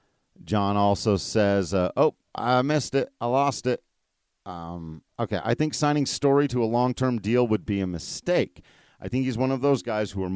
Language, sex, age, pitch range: English, male, 40-59, 100-130 Hz